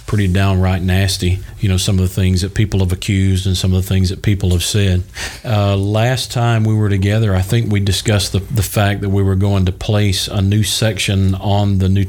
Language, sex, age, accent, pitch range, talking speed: English, male, 40-59, American, 95-105 Hz, 235 wpm